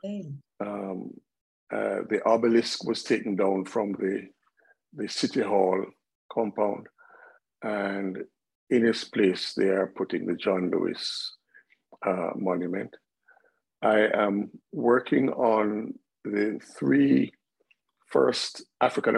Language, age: English, 50-69